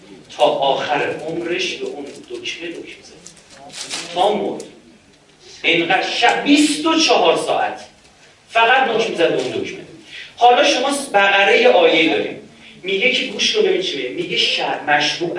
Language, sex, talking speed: Persian, male, 130 wpm